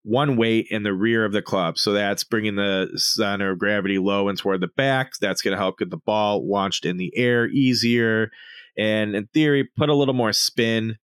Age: 20-39